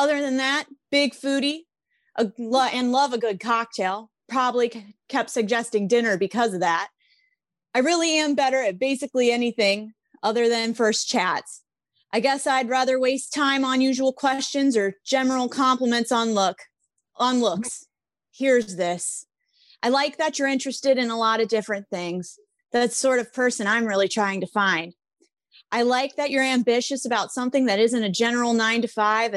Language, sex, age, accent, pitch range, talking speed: English, female, 30-49, American, 220-265 Hz, 165 wpm